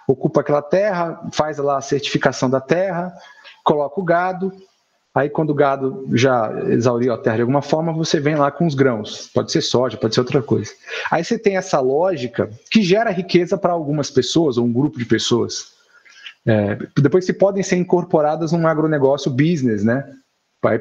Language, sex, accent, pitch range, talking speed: Portuguese, male, Brazilian, 130-175 Hz, 175 wpm